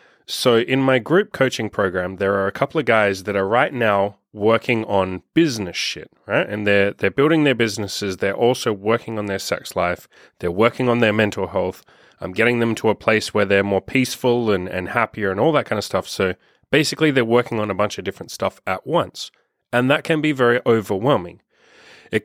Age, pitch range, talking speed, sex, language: 30-49, 100-130 Hz, 210 wpm, male, English